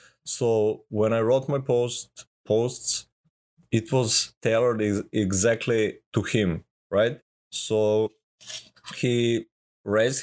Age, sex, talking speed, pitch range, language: 20-39, male, 100 wpm, 95-115 Hz, English